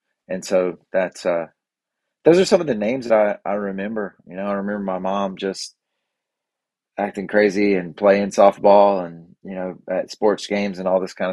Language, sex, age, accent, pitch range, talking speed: English, male, 30-49, American, 95-105 Hz, 190 wpm